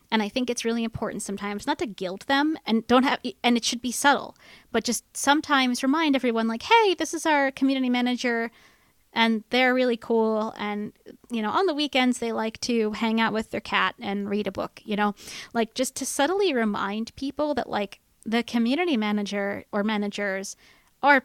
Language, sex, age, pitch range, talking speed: English, female, 20-39, 215-275 Hz, 195 wpm